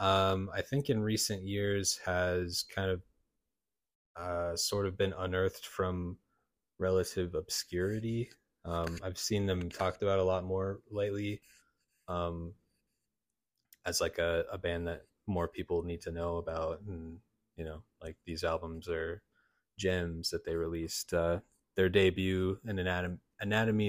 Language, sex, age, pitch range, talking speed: English, male, 20-39, 90-105 Hz, 140 wpm